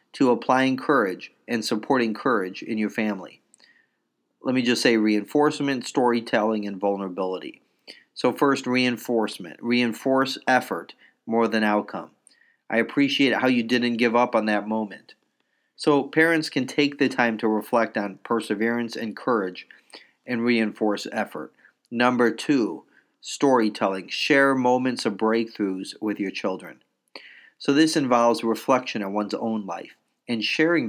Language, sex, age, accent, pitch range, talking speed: English, male, 40-59, American, 105-130 Hz, 135 wpm